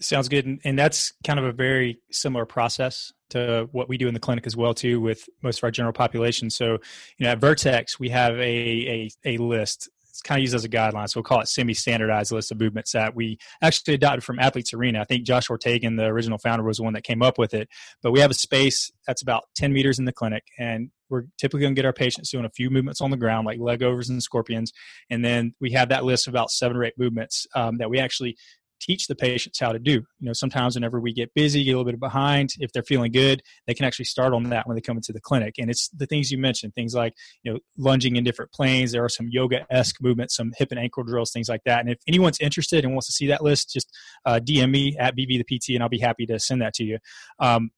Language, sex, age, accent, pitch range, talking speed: English, male, 20-39, American, 115-130 Hz, 265 wpm